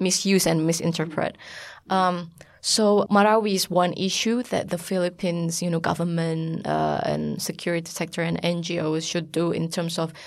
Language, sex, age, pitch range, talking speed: English, female, 20-39, 165-190 Hz, 150 wpm